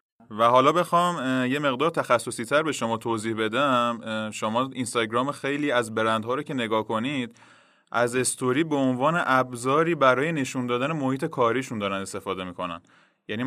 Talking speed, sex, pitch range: 150 wpm, male, 110-135 Hz